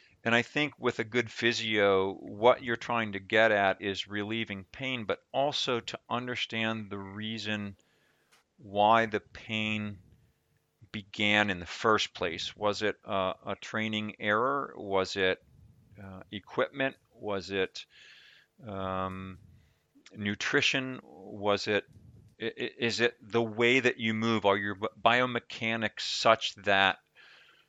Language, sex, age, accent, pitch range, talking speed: English, male, 40-59, American, 100-115 Hz, 125 wpm